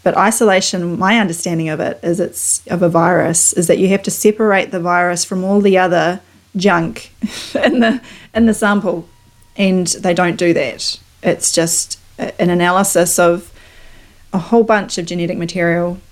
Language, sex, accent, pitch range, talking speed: English, female, Australian, 170-200 Hz, 170 wpm